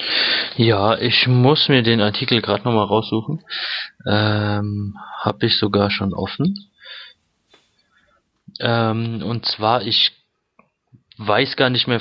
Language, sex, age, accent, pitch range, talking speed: German, male, 20-39, German, 105-120 Hz, 115 wpm